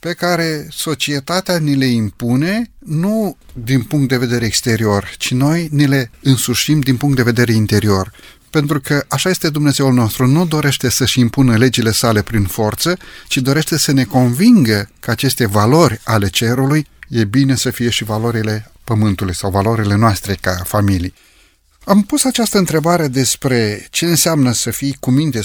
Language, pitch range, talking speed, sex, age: Romanian, 120-160 Hz, 160 wpm, male, 30-49